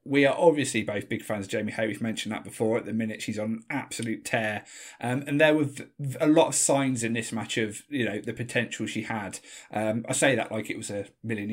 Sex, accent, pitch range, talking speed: male, British, 110-130 Hz, 250 wpm